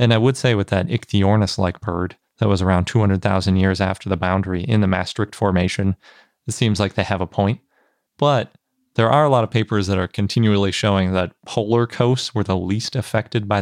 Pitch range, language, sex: 95-115 Hz, English, male